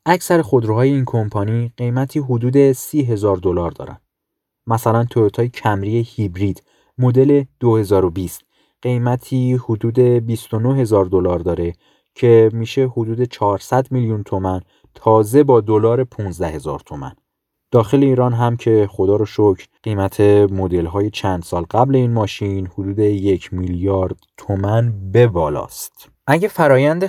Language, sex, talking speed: Persian, male, 125 wpm